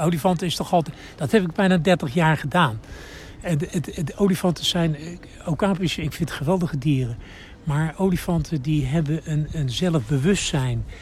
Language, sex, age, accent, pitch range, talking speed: Dutch, male, 60-79, Dutch, 125-175 Hz, 160 wpm